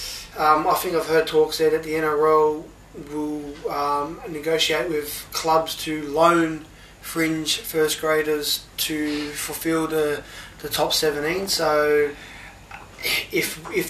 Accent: Australian